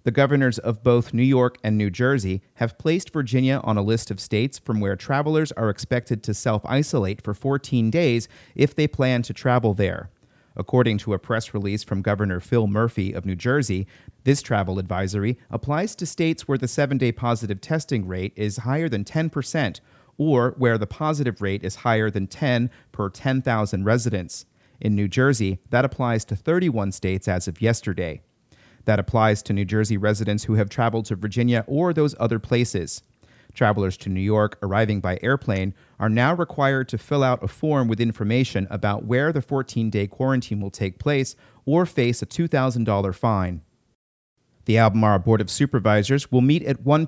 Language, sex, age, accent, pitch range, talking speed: English, male, 30-49, American, 105-135 Hz, 175 wpm